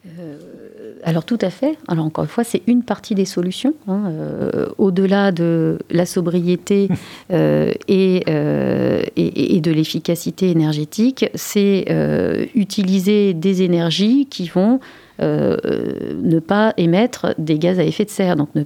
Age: 40-59